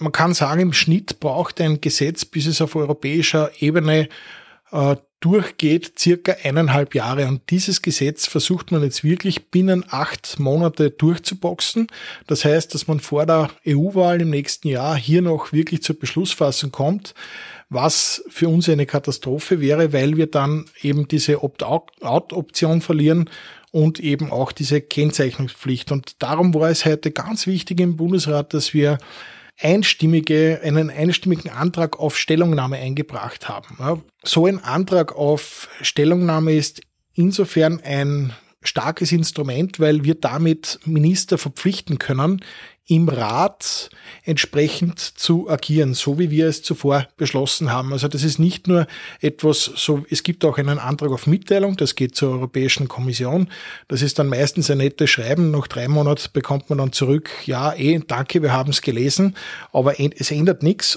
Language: German